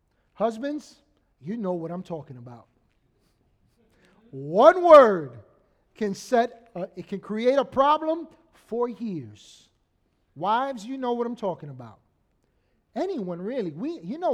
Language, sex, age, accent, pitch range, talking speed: English, male, 30-49, American, 180-240 Hz, 130 wpm